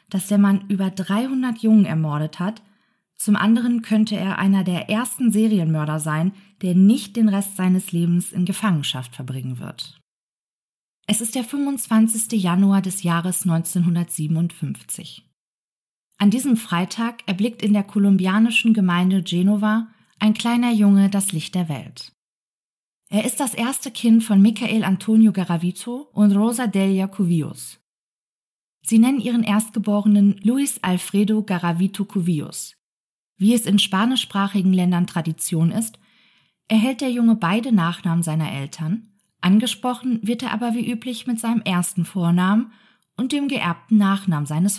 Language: German